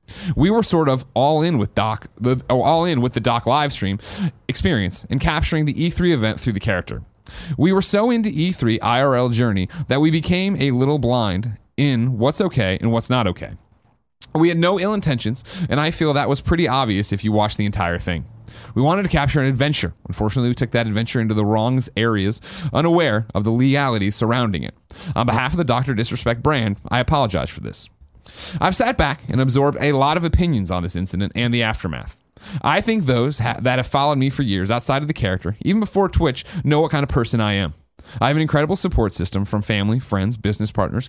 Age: 30-49